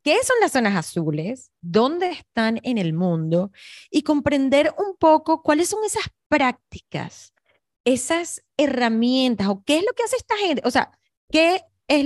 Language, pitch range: Spanish, 205-285 Hz